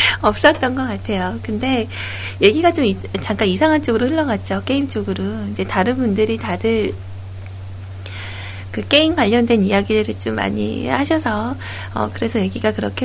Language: Korean